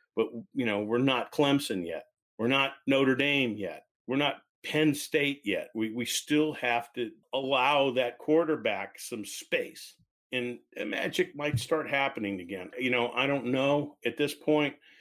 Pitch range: 120-150 Hz